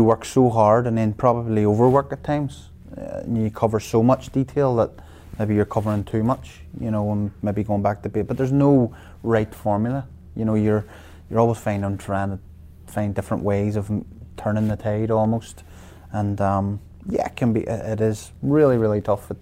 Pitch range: 100-115 Hz